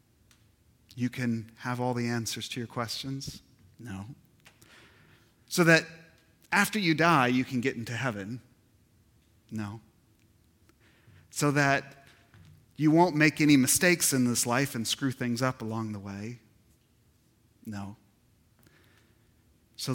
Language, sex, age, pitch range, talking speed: English, male, 30-49, 115-135 Hz, 120 wpm